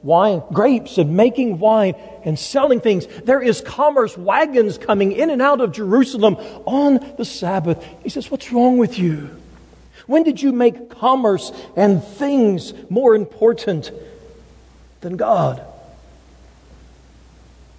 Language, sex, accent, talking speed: English, male, American, 130 wpm